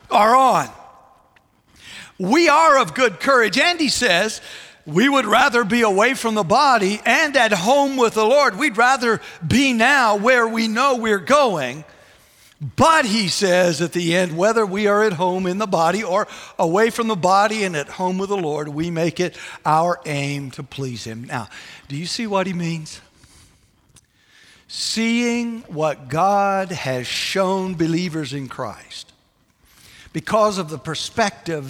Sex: male